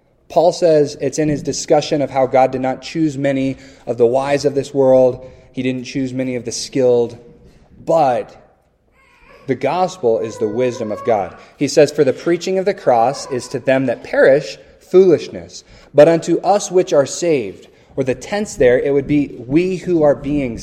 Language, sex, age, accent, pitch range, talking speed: English, male, 20-39, American, 130-165 Hz, 190 wpm